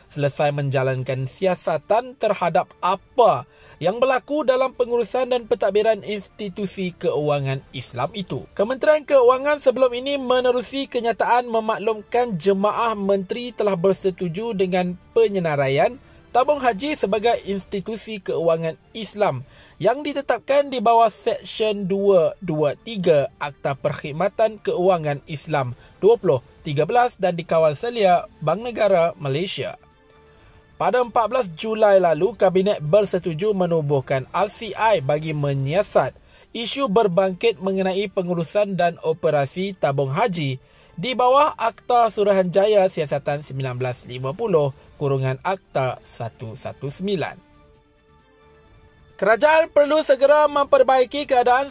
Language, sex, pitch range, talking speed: Malay, male, 155-240 Hz, 95 wpm